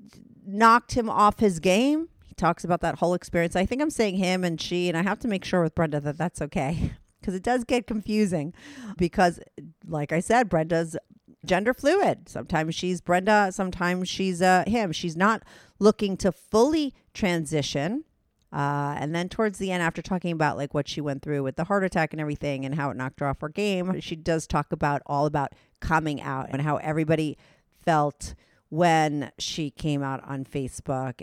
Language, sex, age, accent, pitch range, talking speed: English, female, 40-59, American, 145-190 Hz, 190 wpm